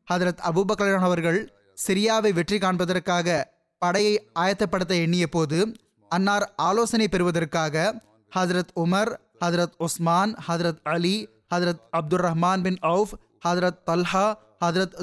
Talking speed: 110 wpm